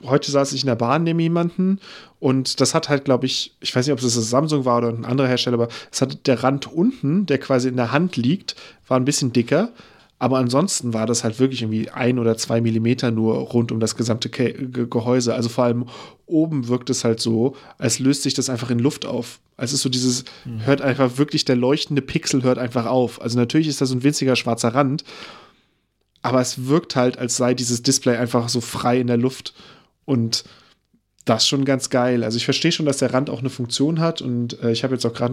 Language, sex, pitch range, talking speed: German, male, 120-140 Hz, 230 wpm